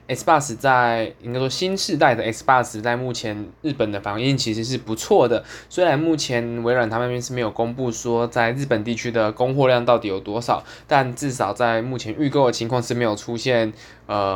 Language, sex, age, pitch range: Chinese, male, 20-39, 110-130 Hz